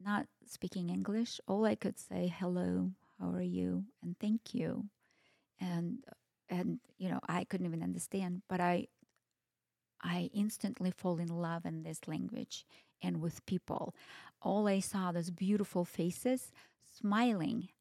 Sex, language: female, English